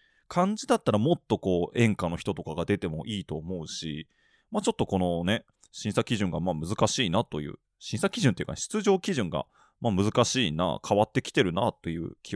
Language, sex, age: Japanese, male, 20-39